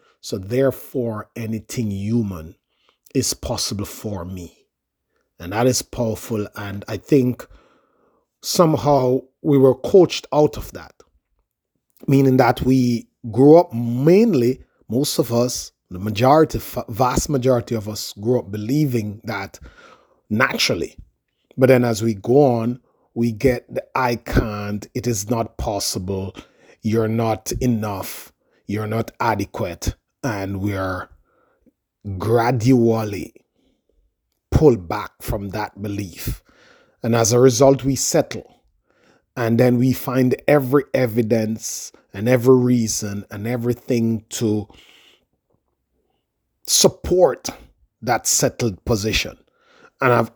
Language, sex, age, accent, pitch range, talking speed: English, male, 30-49, Nigerian, 105-130 Hz, 115 wpm